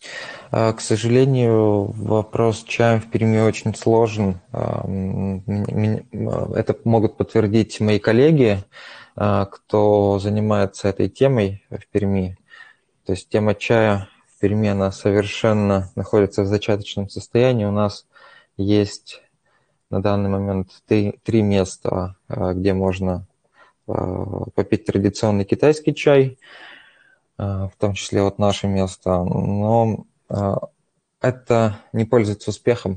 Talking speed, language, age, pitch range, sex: 105 wpm, Russian, 20-39, 100-110 Hz, male